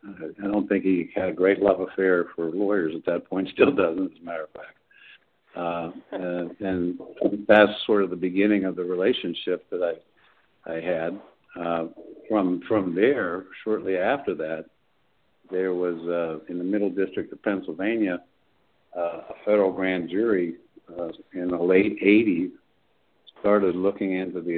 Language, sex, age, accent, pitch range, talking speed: English, male, 60-79, American, 85-95 Hz, 160 wpm